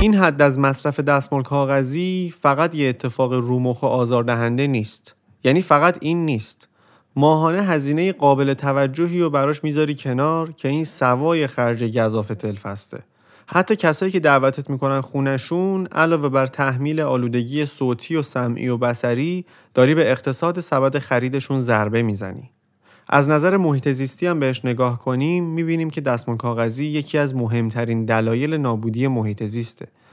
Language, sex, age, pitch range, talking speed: Persian, male, 30-49, 120-155 Hz, 145 wpm